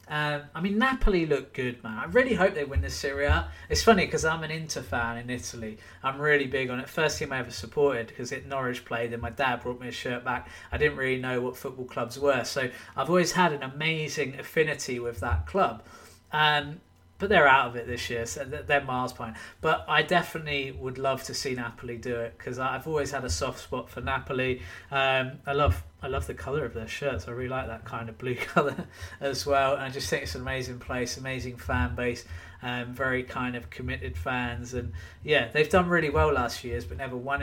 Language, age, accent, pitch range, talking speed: English, 20-39, British, 120-155 Hz, 230 wpm